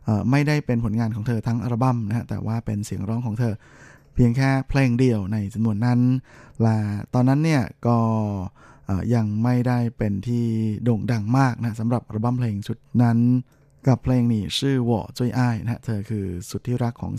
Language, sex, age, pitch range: Thai, male, 20-39, 110-130 Hz